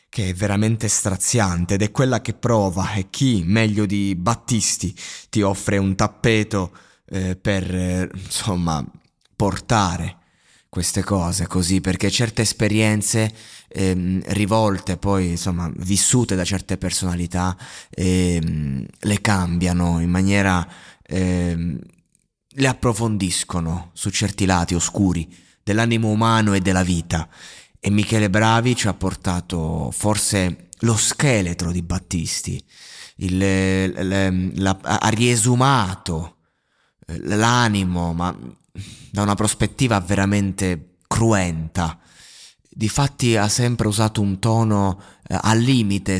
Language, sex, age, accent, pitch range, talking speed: Italian, male, 20-39, native, 90-110 Hz, 115 wpm